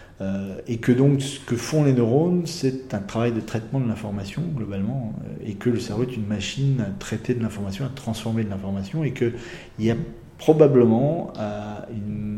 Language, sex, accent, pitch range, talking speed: French, male, French, 100-125 Hz, 180 wpm